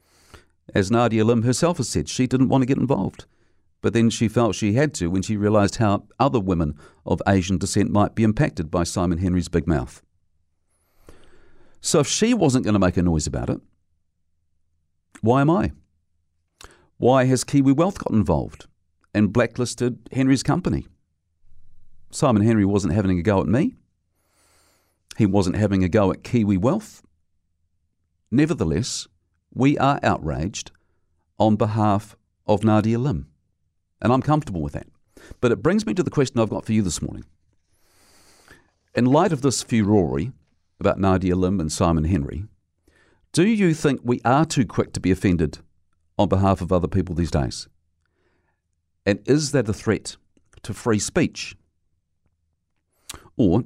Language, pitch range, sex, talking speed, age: English, 85-115 Hz, male, 155 wpm, 50-69